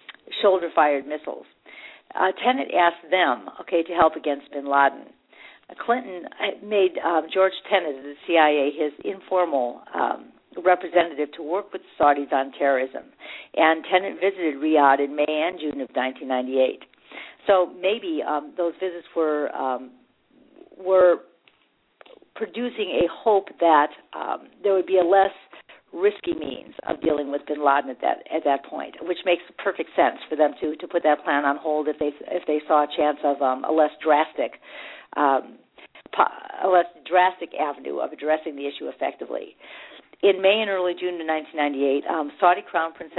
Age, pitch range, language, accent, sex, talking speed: 50-69, 145-185 Hz, English, American, female, 165 wpm